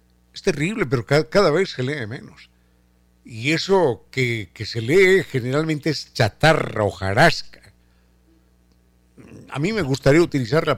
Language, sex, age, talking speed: Spanish, male, 60-79, 135 wpm